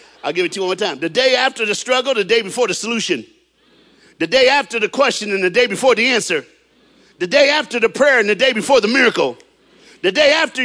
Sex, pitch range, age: male, 235-390 Hz, 50-69